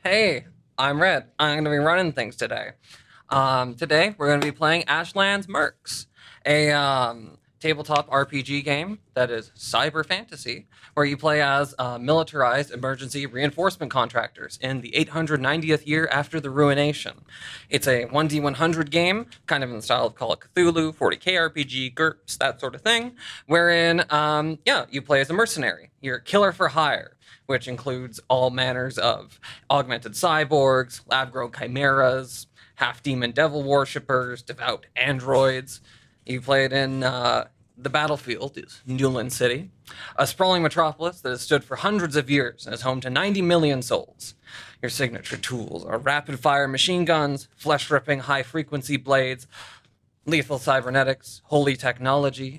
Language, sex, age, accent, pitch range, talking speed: English, male, 20-39, American, 130-155 Hz, 155 wpm